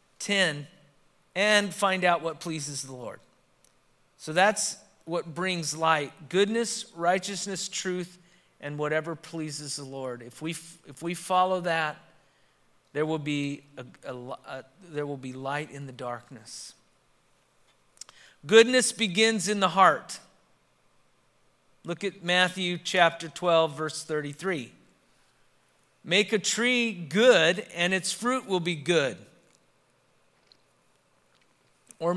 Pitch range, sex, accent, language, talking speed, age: 160-215 Hz, male, American, English, 110 wpm, 40-59